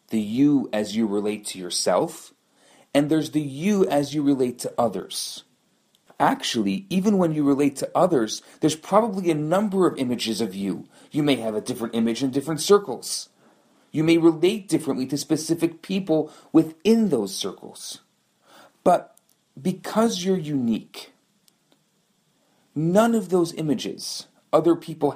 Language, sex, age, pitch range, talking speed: English, male, 40-59, 135-190 Hz, 145 wpm